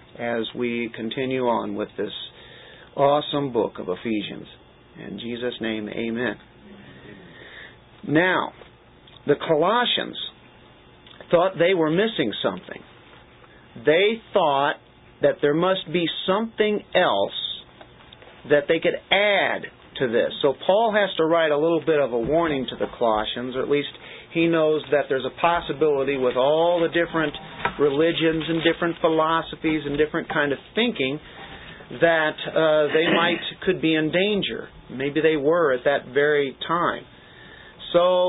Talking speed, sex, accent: 140 wpm, male, American